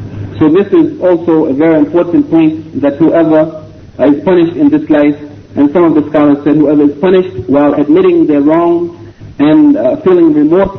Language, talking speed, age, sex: English, 180 wpm, 50-69, male